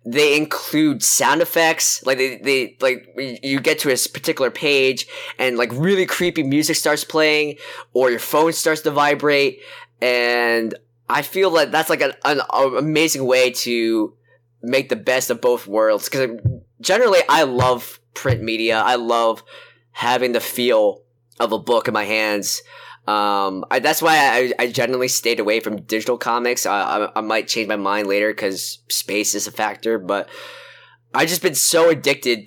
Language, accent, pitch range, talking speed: English, American, 110-135 Hz, 170 wpm